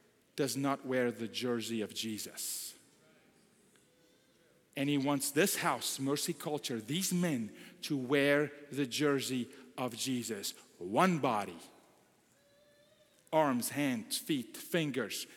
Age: 40-59